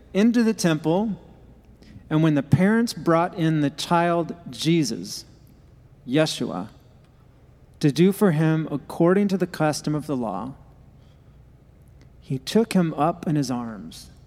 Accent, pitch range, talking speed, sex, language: American, 130-170 Hz, 130 wpm, male, English